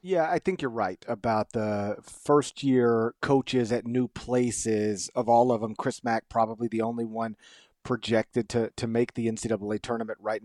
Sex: male